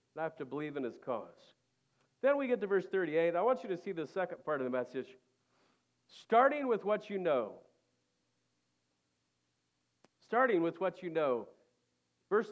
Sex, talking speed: male, 170 wpm